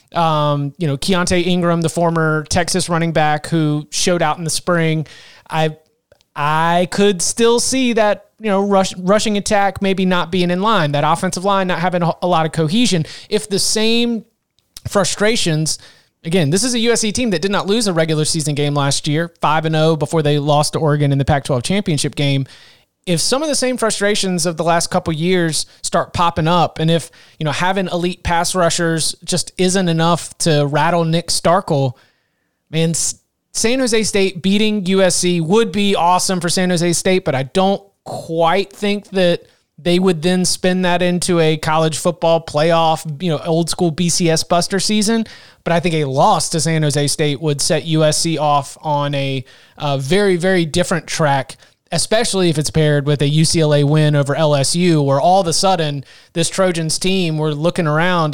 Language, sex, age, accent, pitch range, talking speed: English, male, 30-49, American, 155-190 Hz, 185 wpm